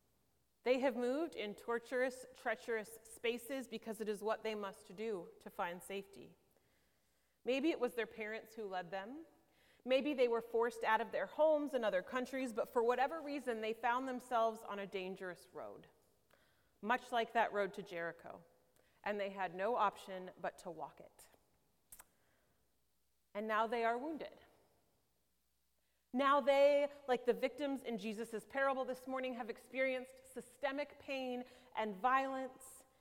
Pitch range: 215-265 Hz